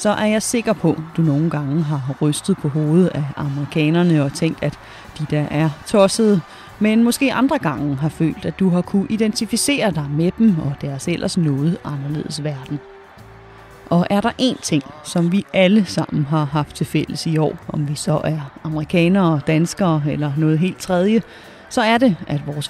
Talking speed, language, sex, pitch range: 190 wpm, Danish, female, 150-200 Hz